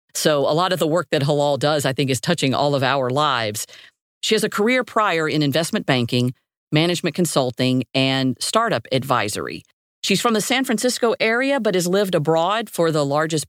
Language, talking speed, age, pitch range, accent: English, 190 wpm, 50-69, 140-180 Hz, American